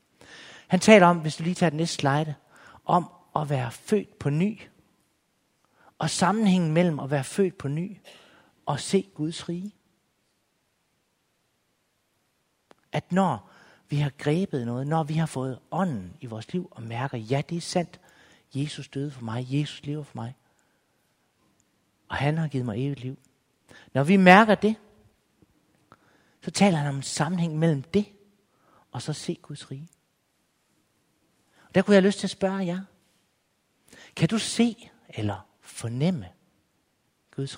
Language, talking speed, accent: Danish, 150 wpm, native